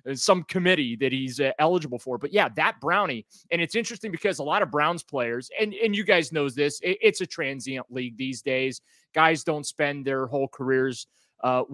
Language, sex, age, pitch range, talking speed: English, male, 30-49, 130-155 Hz, 195 wpm